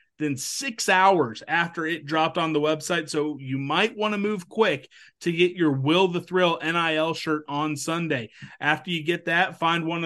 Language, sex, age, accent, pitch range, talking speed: English, male, 30-49, American, 145-170 Hz, 190 wpm